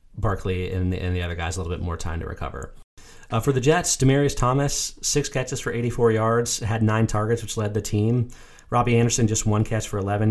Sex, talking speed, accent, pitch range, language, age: male, 225 wpm, American, 100-120 Hz, English, 30-49